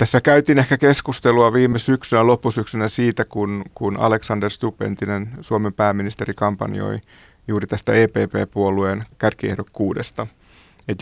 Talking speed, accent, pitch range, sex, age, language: 110 wpm, native, 100-115 Hz, male, 30-49, Finnish